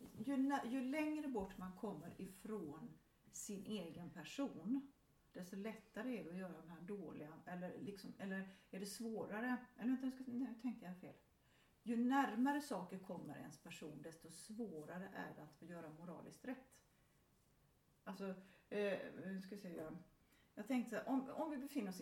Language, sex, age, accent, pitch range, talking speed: English, female, 40-59, Swedish, 185-245 Hz, 155 wpm